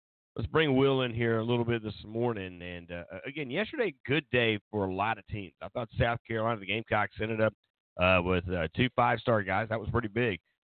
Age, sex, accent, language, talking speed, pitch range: 40-59, male, American, English, 220 wpm, 85-110 Hz